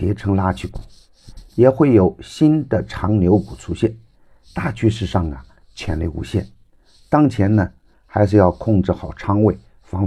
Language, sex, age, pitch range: Chinese, male, 50-69, 95-110 Hz